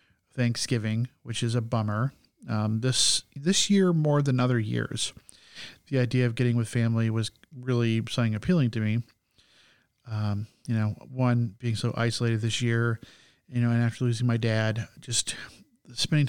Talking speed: 160 wpm